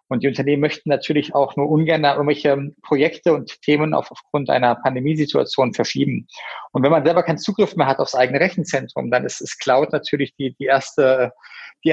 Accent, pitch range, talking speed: German, 135-160 Hz, 180 wpm